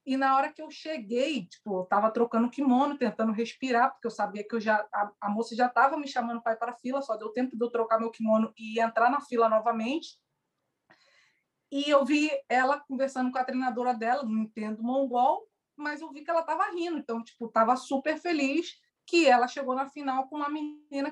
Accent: Brazilian